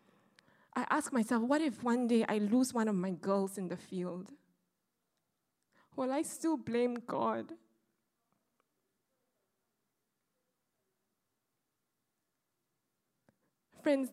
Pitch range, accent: 225-285 Hz, Malaysian